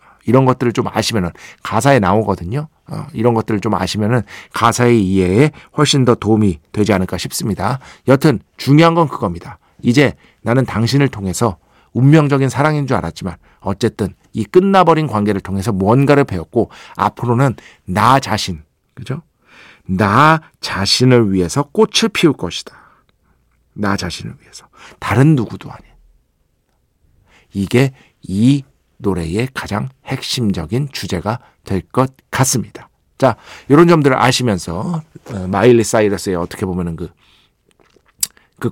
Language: Korean